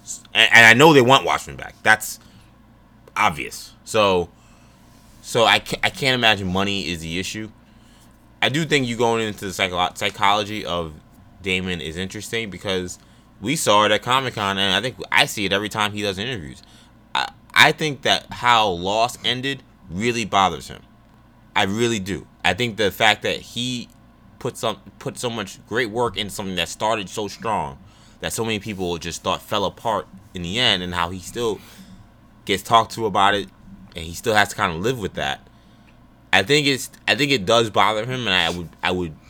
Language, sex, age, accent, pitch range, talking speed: English, male, 20-39, American, 85-110 Hz, 195 wpm